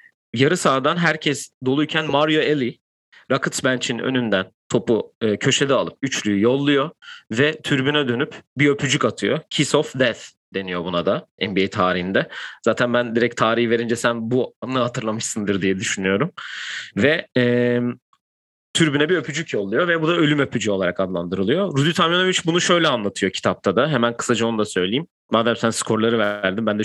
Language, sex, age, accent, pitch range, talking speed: Turkish, male, 30-49, native, 115-155 Hz, 155 wpm